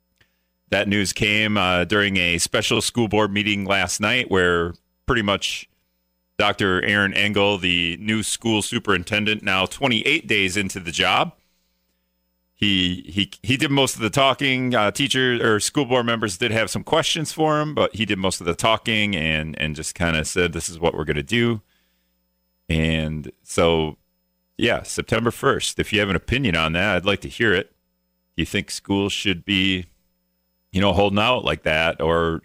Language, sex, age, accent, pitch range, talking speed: English, male, 40-59, American, 80-105 Hz, 180 wpm